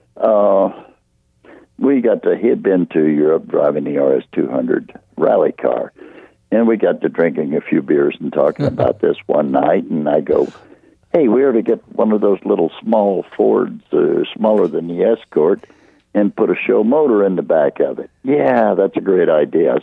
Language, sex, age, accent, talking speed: English, male, 60-79, American, 195 wpm